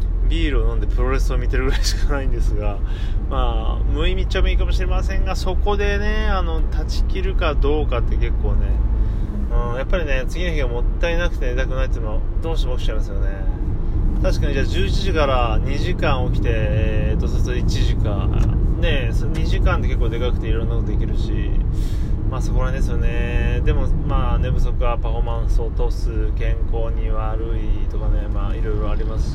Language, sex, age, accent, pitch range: Japanese, male, 20-39, native, 85-110 Hz